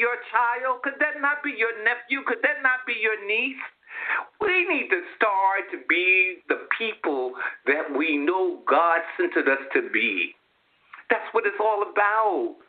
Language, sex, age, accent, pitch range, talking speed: English, male, 50-69, American, 215-345 Hz, 165 wpm